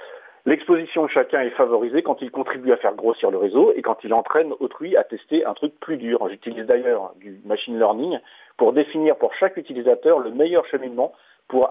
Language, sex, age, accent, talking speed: French, male, 40-59, French, 195 wpm